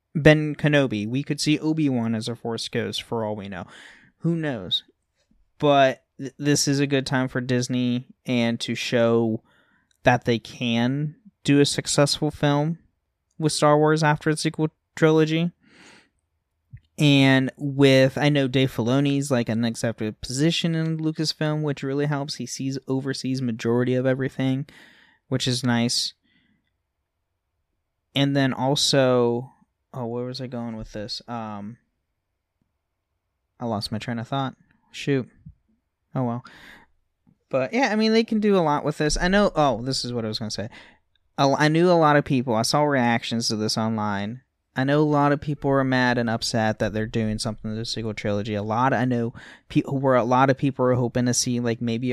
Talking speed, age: 180 wpm, 20-39